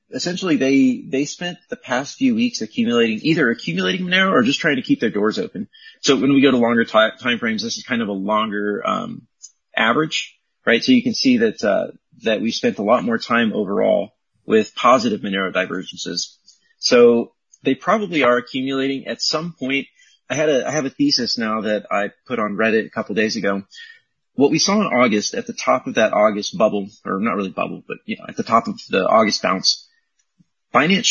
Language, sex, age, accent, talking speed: English, male, 30-49, American, 210 wpm